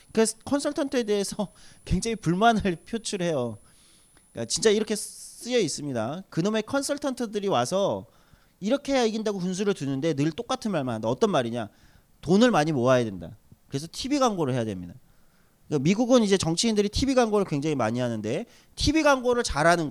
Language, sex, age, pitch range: Korean, male, 30-49, 150-230 Hz